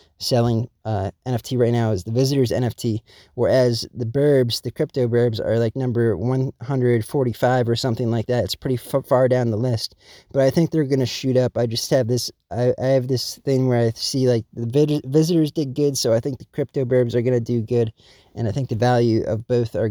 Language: English